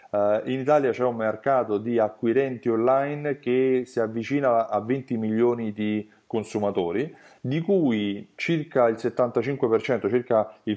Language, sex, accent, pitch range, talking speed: Italian, male, native, 110-145 Hz, 130 wpm